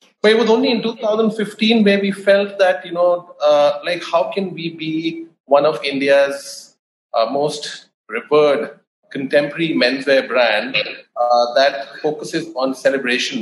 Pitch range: 130-170 Hz